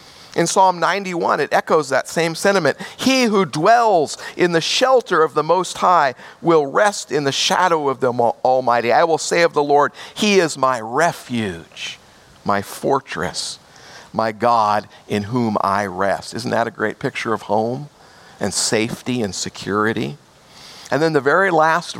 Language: English